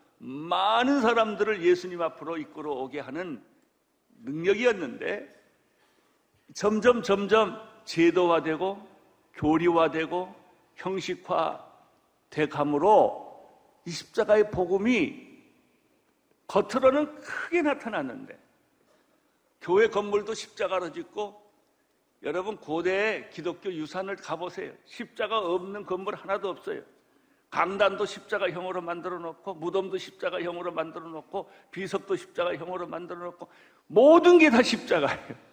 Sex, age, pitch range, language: male, 60-79, 165-230 Hz, Korean